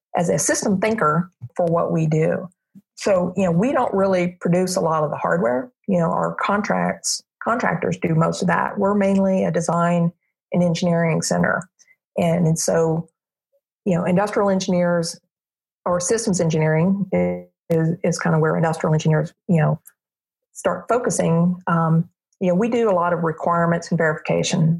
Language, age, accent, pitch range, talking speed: English, 50-69, American, 160-180 Hz, 165 wpm